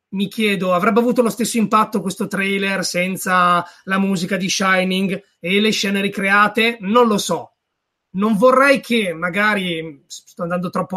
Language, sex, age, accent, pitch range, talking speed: Italian, male, 30-49, native, 185-230 Hz, 155 wpm